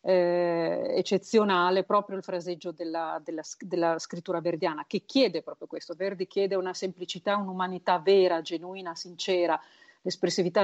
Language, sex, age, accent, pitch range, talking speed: Italian, female, 50-69, native, 170-190 Hz, 125 wpm